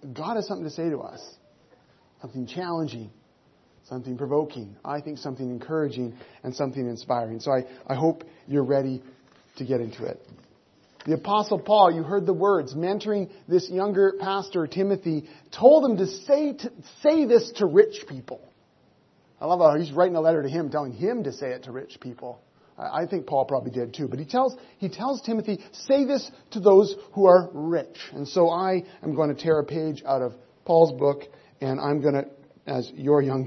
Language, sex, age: English, male, 40-59